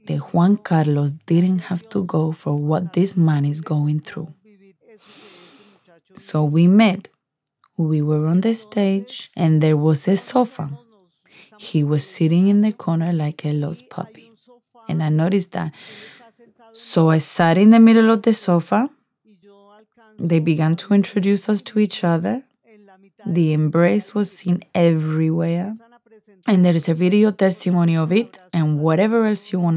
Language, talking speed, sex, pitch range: English, 155 wpm, female, 165-215 Hz